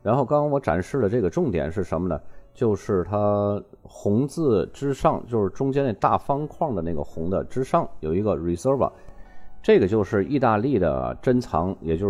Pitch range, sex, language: 85-120 Hz, male, Chinese